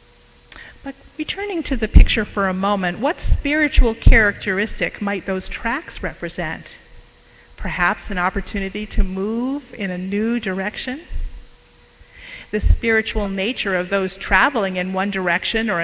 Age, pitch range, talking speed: 50-69, 190-235 Hz, 125 wpm